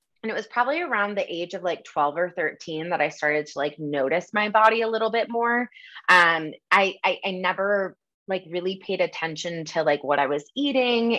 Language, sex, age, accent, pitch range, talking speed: English, female, 20-39, American, 155-190 Hz, 210 wpm